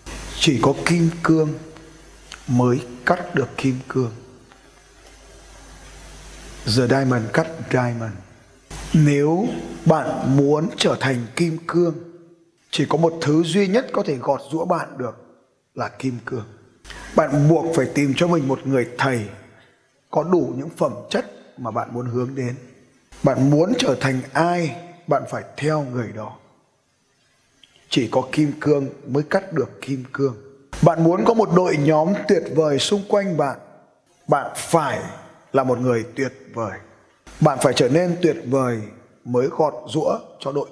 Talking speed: 150 wpm